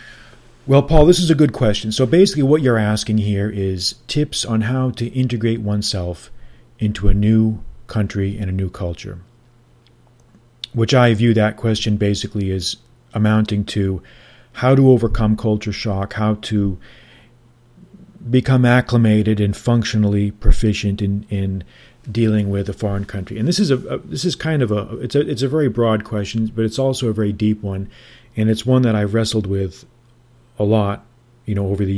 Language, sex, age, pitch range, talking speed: English, male, 40-59, 100-120 Hz, 175 wpm